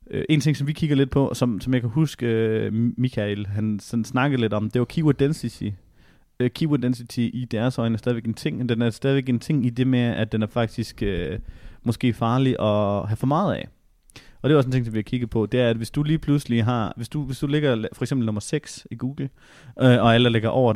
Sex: male